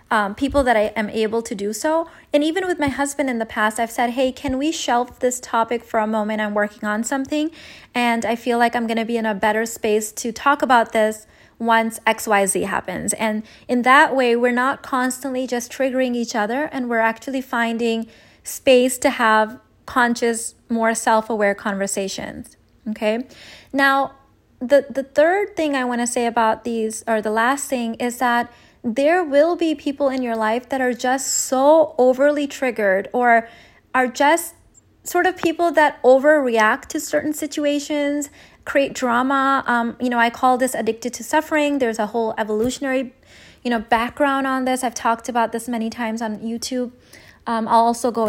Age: 20-39